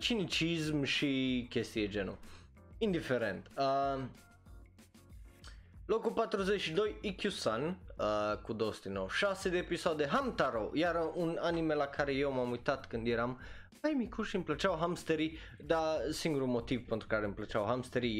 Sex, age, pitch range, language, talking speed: male, 20-39, 110-170 Hz, Romanian, 130 wpm